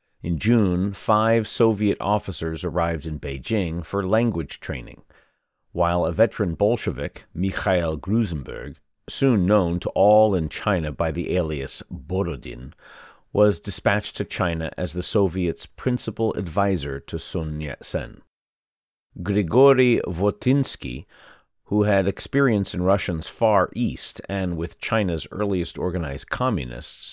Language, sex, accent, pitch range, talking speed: English, male, American, 80-105 Hz, 120 wpm